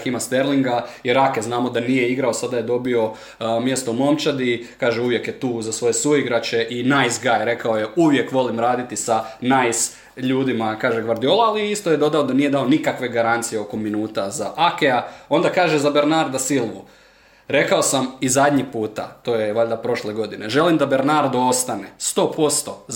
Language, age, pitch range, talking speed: Croatian, 20-39, 115-140 Hz, 180 wpm